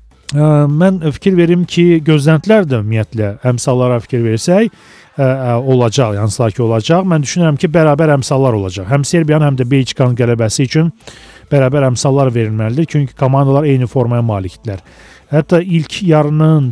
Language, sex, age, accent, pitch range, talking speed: Russian, male, 40-59, Turkish, 120-155 Hz, 140 wpm